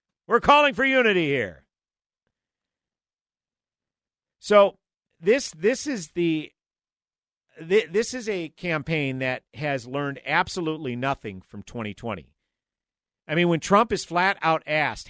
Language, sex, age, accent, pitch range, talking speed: English, male, 50-69, American, 135-195 Hz, 115 wpm